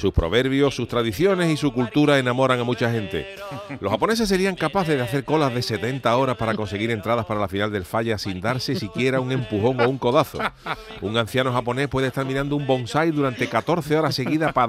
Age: 40-59